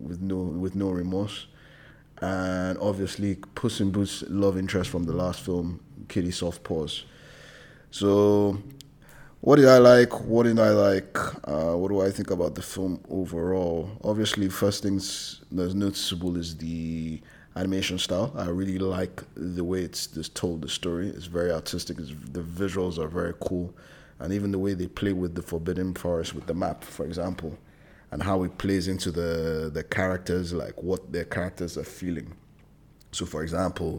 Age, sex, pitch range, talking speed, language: 20-39, male, 85-95 Hz, 170 wpm, English